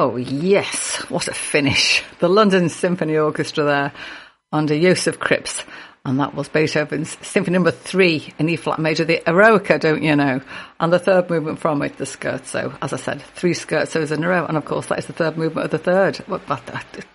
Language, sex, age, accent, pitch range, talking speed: English, female, 50-69, British, 150-195 Hz, 210 wpm